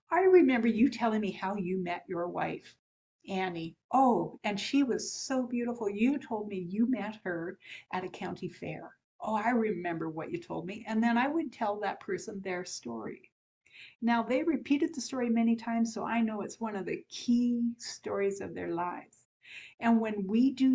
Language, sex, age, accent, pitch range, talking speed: English, female, 60-79, American, 190-235 Hz, 190 wpm